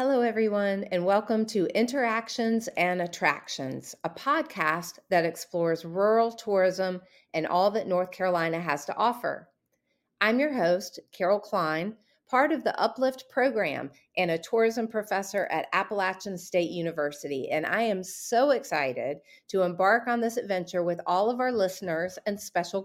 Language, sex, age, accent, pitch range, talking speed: English, female, 40-59, American, 175-230 Hz, 150 wpm